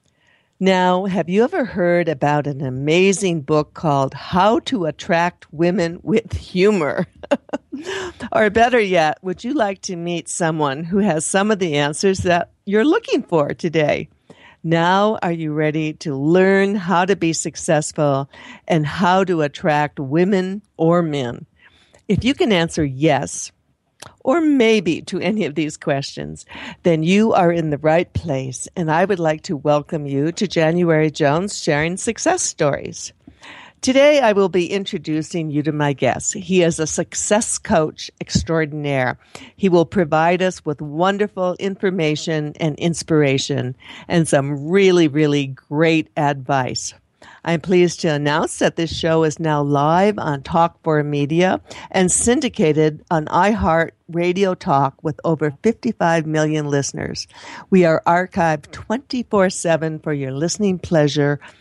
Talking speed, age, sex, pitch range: 145 wpm, 60-79, female, 150-185 Hz